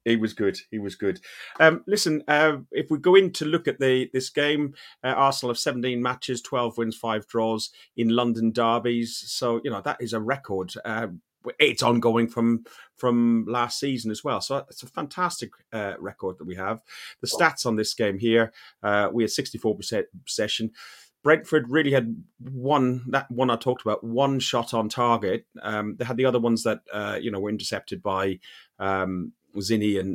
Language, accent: English, British